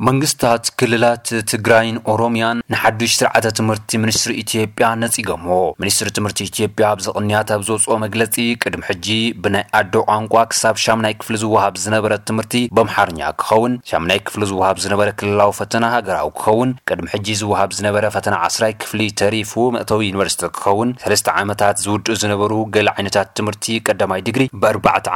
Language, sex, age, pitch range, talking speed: Amharic, male, 30-49, 100-115 Hz, 140 wpm